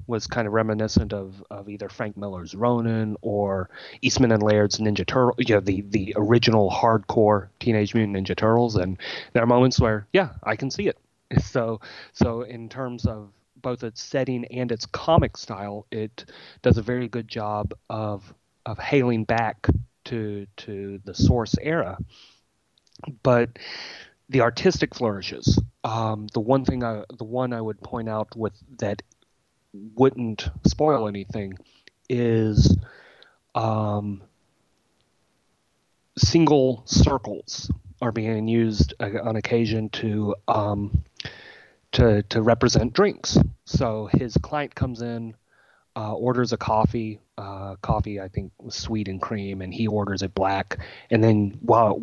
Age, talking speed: 30-49, 140 wpm